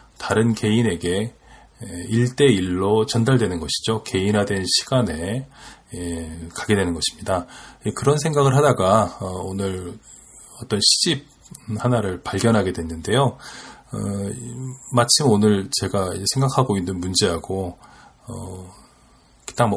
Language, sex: Korean, male